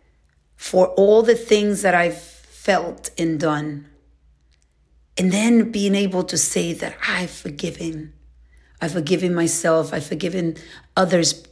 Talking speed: 125 wpm